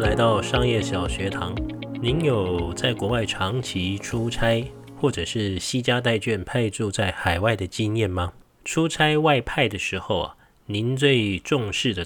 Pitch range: 95-130 Hz